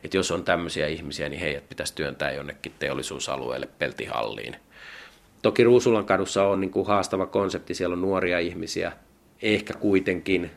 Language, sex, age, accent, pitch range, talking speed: Finnish, male, 30-49, native, 80-95 Hz, 135 wpm